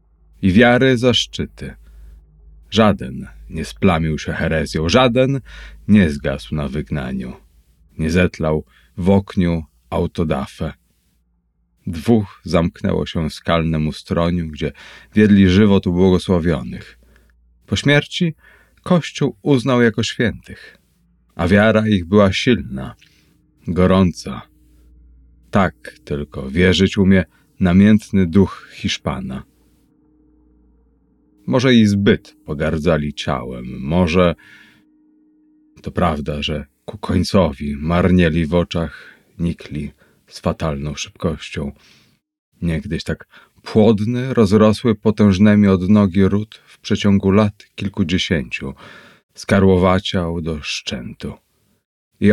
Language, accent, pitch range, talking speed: Polish, native, 75-105 Hz, 95 wpm